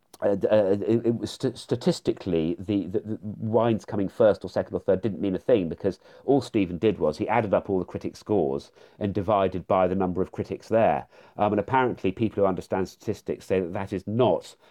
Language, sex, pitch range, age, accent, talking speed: English, male, 100-150 Hz, 40-59, British, 210 wpm